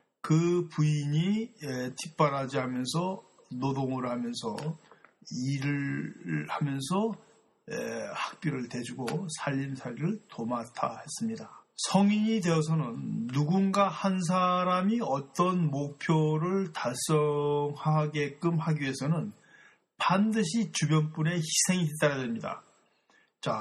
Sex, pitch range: male, 145-185 Hz